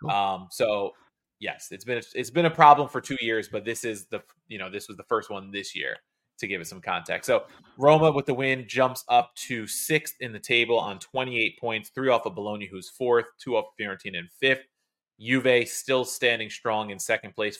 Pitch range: 100-125 Hz